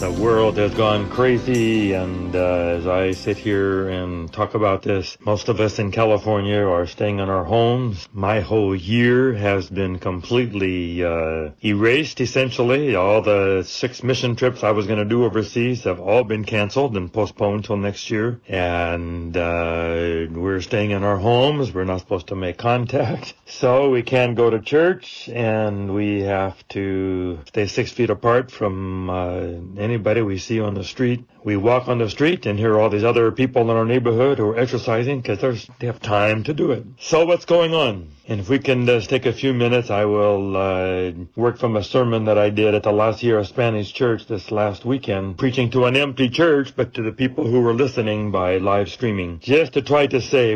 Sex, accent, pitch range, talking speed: male, American, 95-120 Hz, 200 wpm